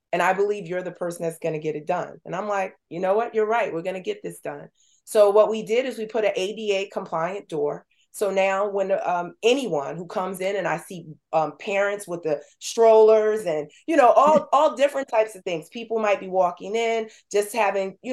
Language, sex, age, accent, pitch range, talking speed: English, female, 30-49, American, 175-220 Hz, 230 wpm